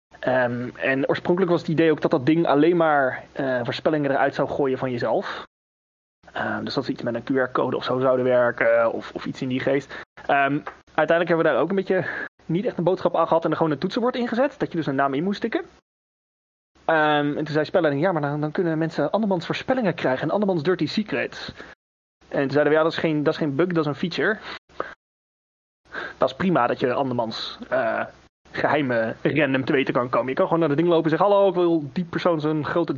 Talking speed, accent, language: 235 wpm, Dutch, Dutch